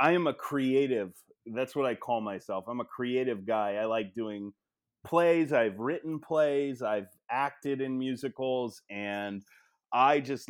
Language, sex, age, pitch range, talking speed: English, male, 30-49, 110-135 Hz, 155 wpm